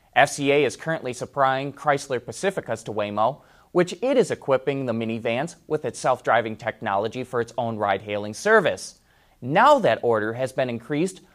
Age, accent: 30-49, American